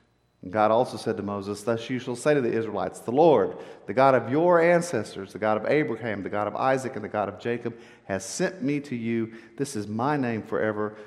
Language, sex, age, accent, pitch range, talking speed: English, male, 50-69, American, 110-145 Hz, 230 wpm